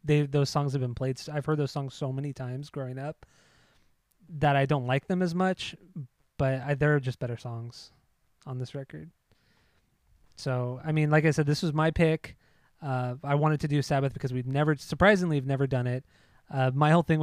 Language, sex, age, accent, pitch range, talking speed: English, male, 20-39, American, 130-155 Hz, 205 wpm